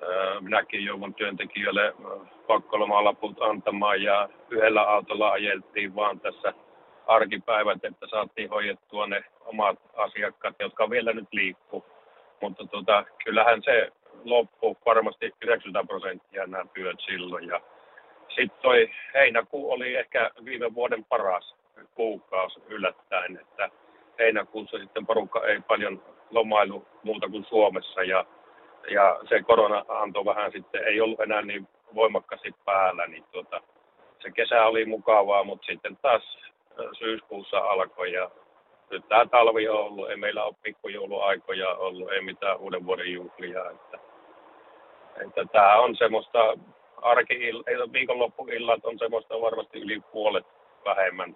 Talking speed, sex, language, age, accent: 125 wpm, male, Finnish, 60-79, native